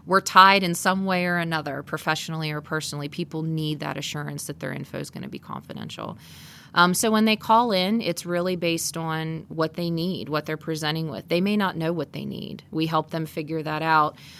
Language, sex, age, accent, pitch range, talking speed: English, female, 30-49, American, 155-180 Hz, 215 wpm